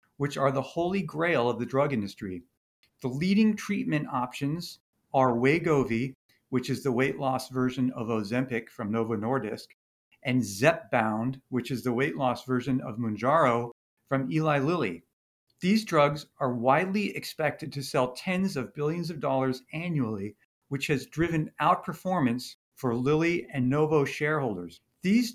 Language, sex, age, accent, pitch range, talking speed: English, male, 50-69, American, 130-170 Hz, 145 wpm